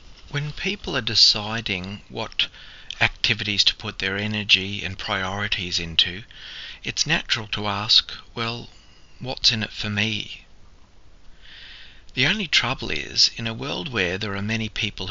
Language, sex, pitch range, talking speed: English, male, 90-110 Hz, 140 wpm